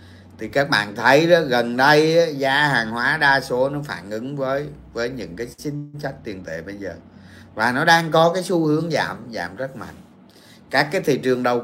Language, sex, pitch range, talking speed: Vietnamese, male, 120-175 Hz, 215 wpm